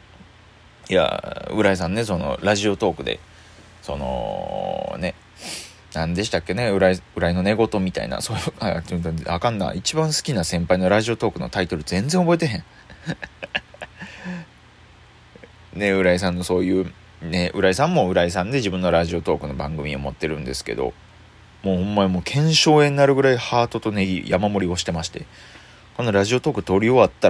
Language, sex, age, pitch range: Japanese, male, 20-39, 90-115 Hz